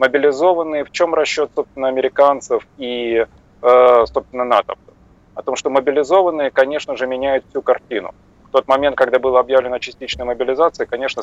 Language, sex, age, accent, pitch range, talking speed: Russian, male, 30-49, native, 125-160 Hz, 150 wpm